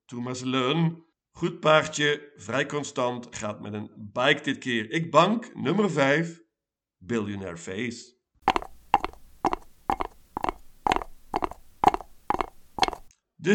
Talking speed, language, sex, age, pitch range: 85 wpm, Dutch, male, 50-69, 115-150 Hz